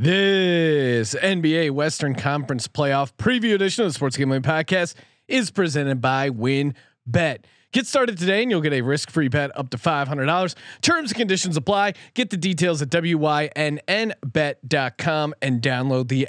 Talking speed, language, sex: 145 wpm, English, male